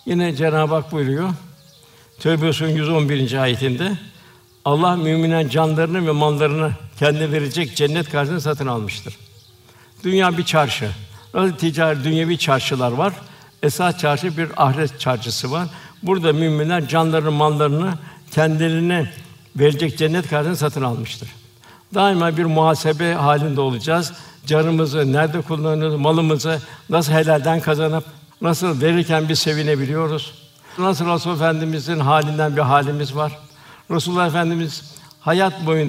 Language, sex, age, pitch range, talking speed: Turkish, male, 60-79, 145-170 Hz, 115 wpm